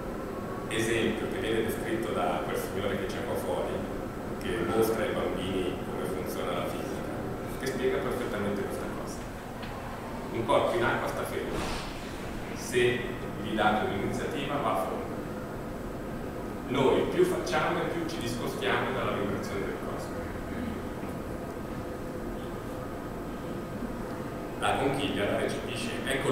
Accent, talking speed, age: native, 120 wpm, 40-59